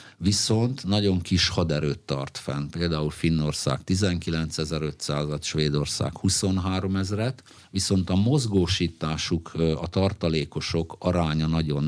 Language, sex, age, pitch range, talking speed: Hungarian, male, 50-69, 80-95 Hz, 90 wpm